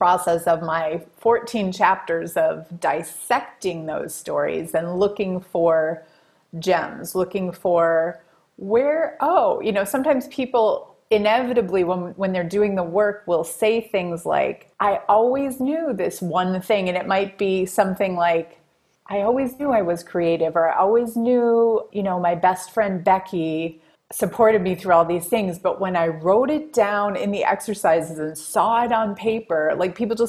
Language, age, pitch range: English, 30-49, 180-235 Hz